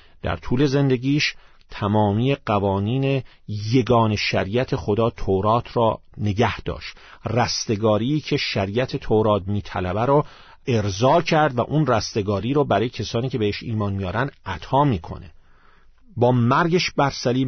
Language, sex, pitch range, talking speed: Persian, male, 100-125 Hz, 125 wpm